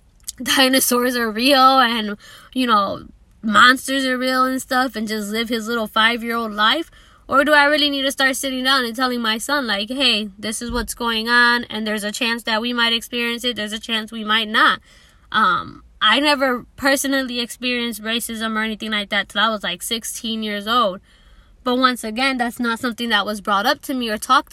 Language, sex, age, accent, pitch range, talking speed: English, female, 10-29, American, 220-270 Hz, 205 wpm